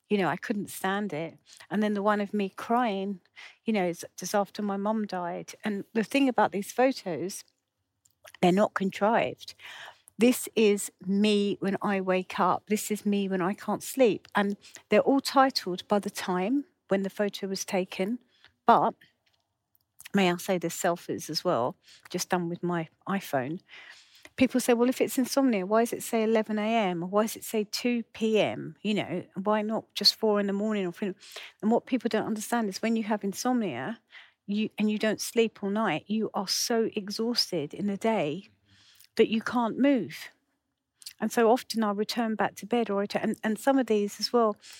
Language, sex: English, female